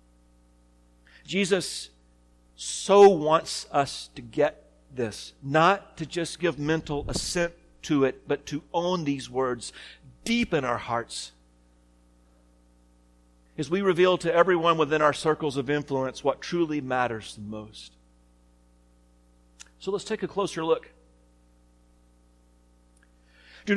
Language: English